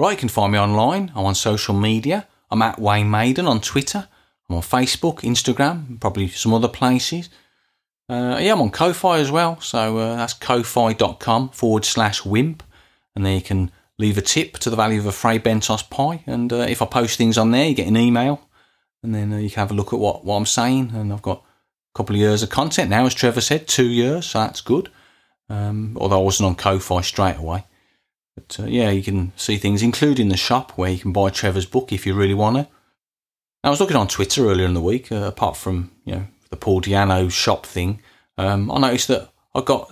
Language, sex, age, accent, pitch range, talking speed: English, male, 40-59, British, 100-130 Hz, 225 wpm